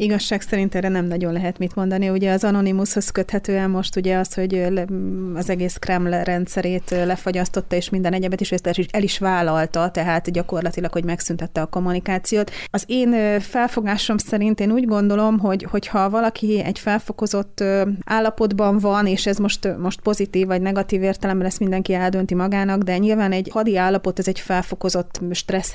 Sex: female